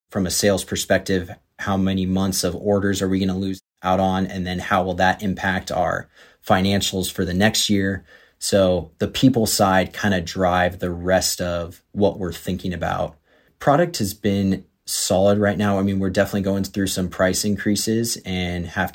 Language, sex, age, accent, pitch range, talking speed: English, male, 30-49, American, 90-100 Hz, 185 wpm